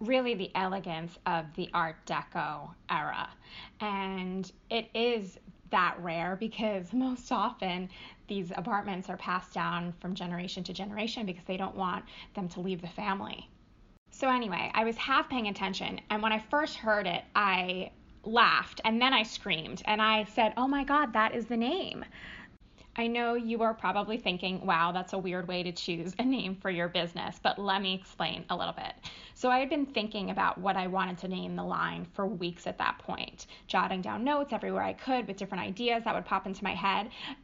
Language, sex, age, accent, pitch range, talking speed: English, female, 20-39, American, 185-220 Hz, 195 wpm